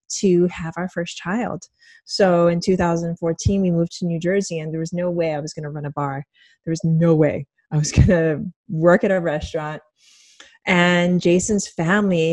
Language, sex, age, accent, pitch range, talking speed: English, female, 20-39, American, 160-205 Hz, 190 wpm